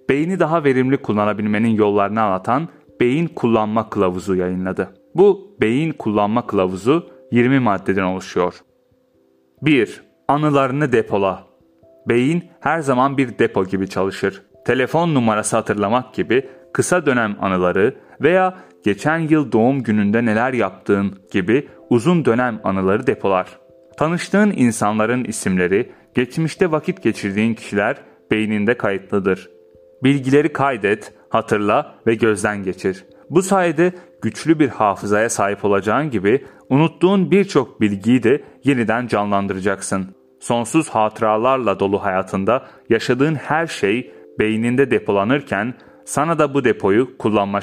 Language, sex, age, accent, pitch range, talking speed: Turkish, male, 30-49, native, 100-140 Hz, 110 wpm